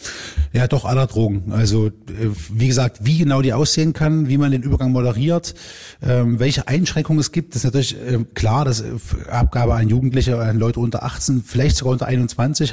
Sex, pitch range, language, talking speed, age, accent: male, 115-135 Hz, German, 175 wpm, 20-39, German